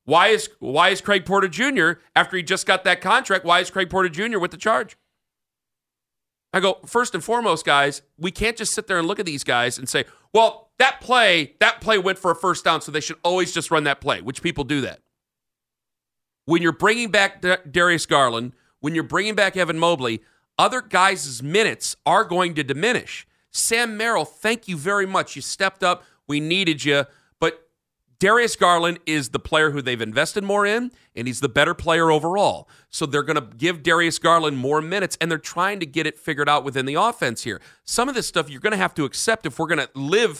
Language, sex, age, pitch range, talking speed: English, male, 40-59, 150-200 Hz, 215 wpm